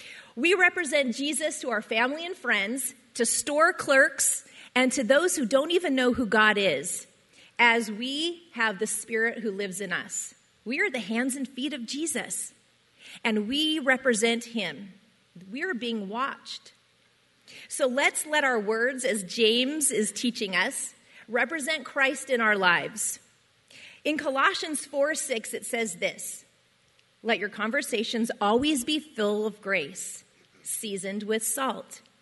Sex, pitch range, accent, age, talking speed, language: female, 210-270 Hz, American, 30-49, 145 wpm, English